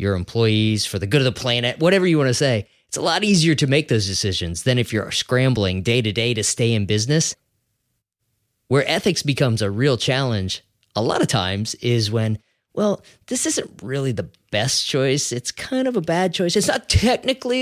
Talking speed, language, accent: 200 wpm, English, American